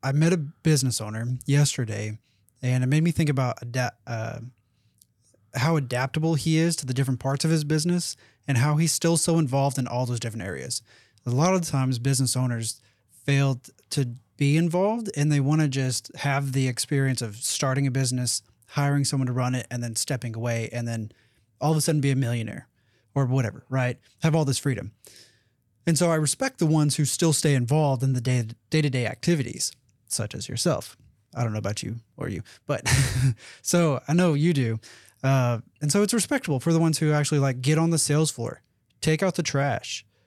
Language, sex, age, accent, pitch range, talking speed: English, male, 20-39, American, 115-150 Hz, 200 wpm